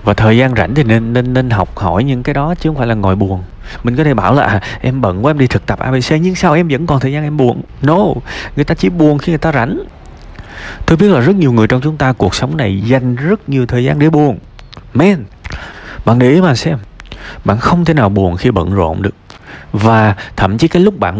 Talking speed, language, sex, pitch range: 255 wpm, Vietnamese, male, 100-135 Hz